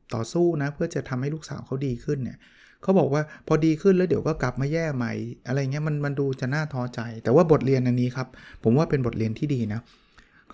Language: Thai